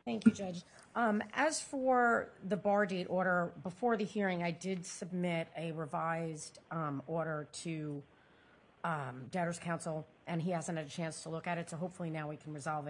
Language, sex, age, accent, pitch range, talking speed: English, female, 40-59, American, 155-205 Hz, 185 wpm